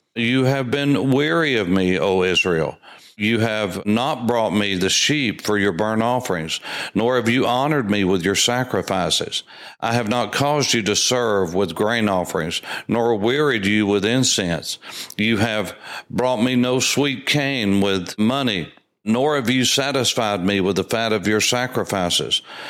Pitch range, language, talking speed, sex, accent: 110-140 Hz, English, 165 wpm, male, American